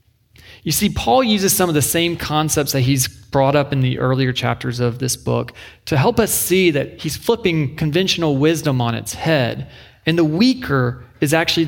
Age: 30-49